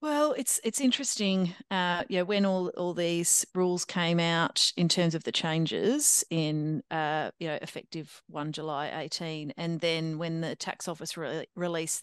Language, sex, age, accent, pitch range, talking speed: English, female, 40-59, Australian, 155-190 Hz, 175 wpm